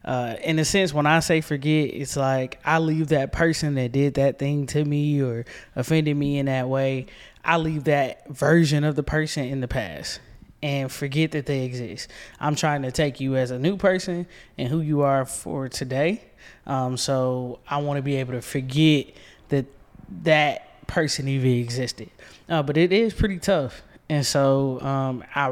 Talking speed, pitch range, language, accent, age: 185 wpm, 130-155 Hz, English, American, 20-39